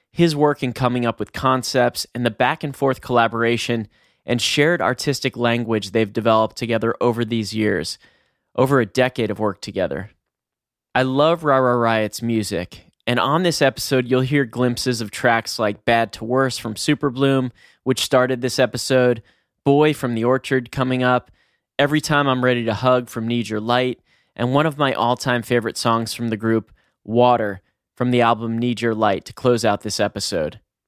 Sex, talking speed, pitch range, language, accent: male, 175 wpm, 110-130 Hz, English, American